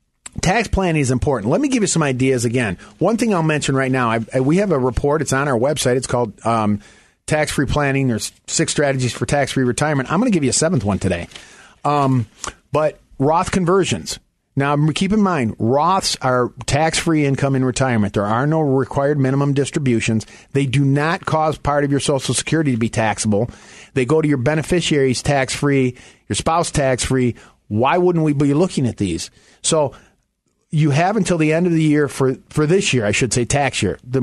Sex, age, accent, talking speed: male, 40-59, American, 195 wpm